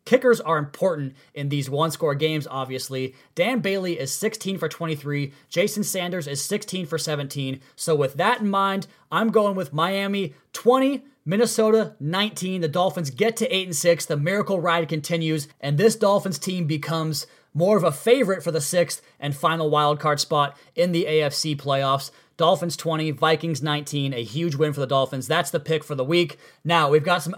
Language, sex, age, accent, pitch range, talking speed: English, male, 30-49, American, 145-180 Hz, 180 wpm